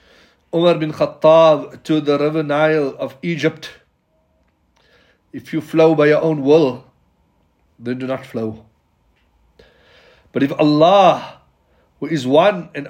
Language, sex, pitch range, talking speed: English, male, 130-160 Hz, 125 wpm